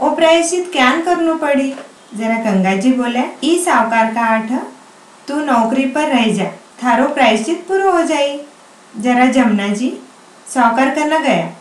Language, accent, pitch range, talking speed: Hindi, native, 230-290 Hz, 70 wpm